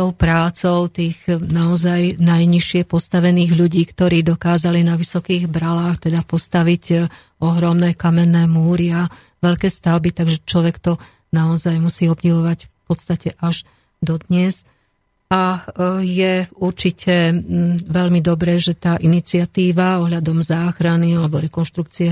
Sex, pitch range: female, 165-175 Hz